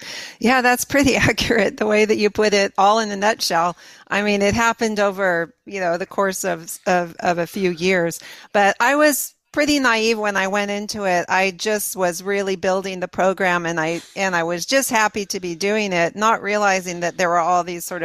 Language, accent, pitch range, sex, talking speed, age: English, American, 175-215 Hz, female, 215 wpm, 40-59